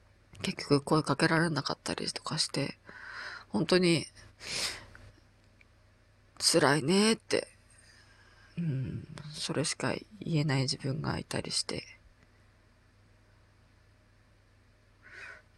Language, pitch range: Japanese, 105-160 Hz